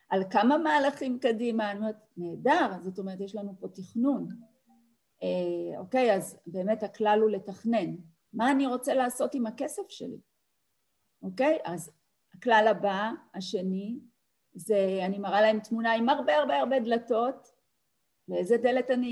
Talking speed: 140 wpm